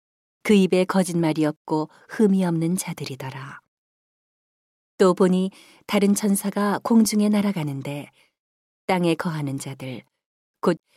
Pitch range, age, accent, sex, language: 160-200 Hz, 40-59, native, female, Korean